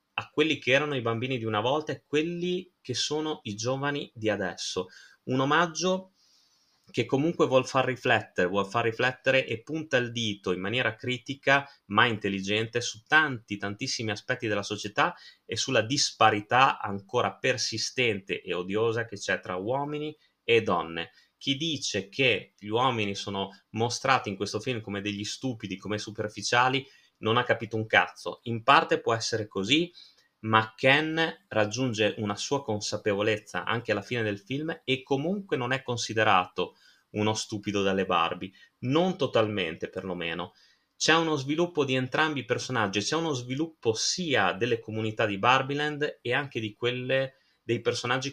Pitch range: 105-145 Hz